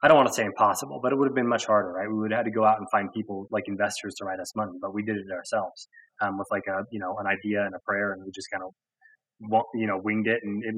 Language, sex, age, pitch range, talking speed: English, male, 20-39, 100-115 Hz, 315 wpm